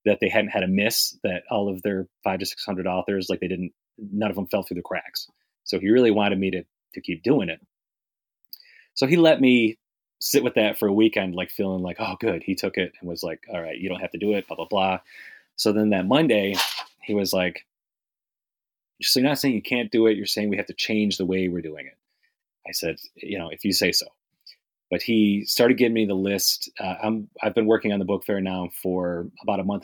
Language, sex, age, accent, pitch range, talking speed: English, male, 30-49, American, 90-110 Hz, 245 wpm